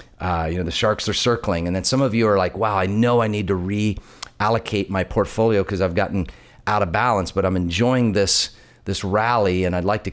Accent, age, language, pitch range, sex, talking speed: American, 40-59, English, 95-115 Hz, male, 230 wpm